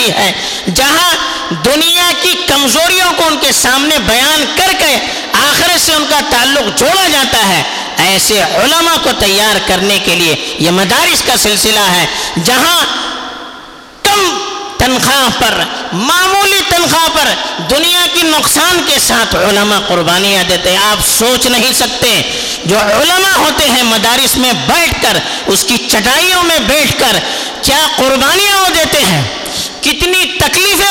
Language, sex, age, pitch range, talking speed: Urdu, female, 50-69, 225-335 Hz, 135 wpm